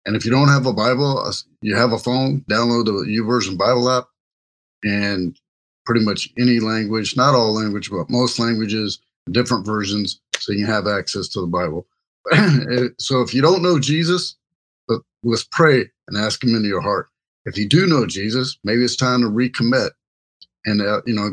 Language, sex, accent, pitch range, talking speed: English, male, American, 105-130 Hz, 185 wpm